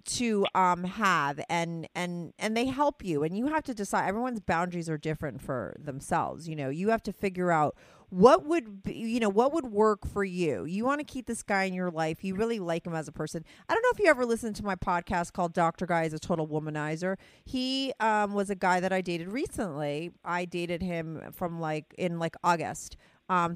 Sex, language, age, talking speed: female, English, 30-49, 220 wpm